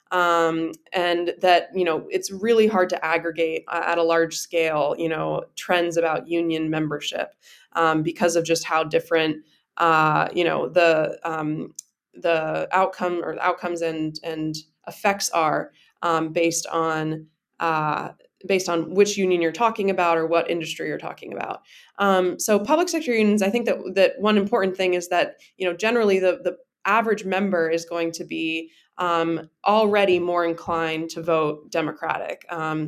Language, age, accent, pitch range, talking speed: English, 20-39, American, 160-185 Hz, 165 wpm